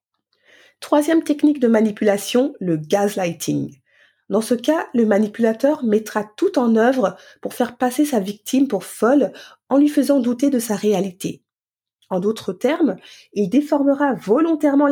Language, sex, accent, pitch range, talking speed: French, female, French, 210-285 Hz, 140 wpm